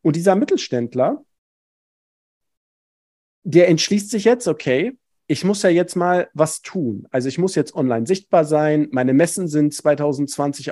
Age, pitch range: 40-59, 140-185 Hz